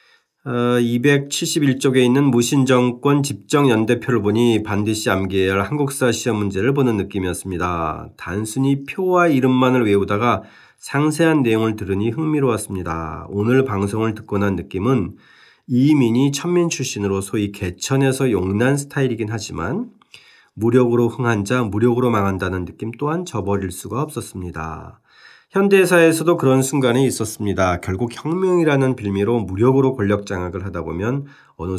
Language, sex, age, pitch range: Korean, male, 40-59, 100-140 Hz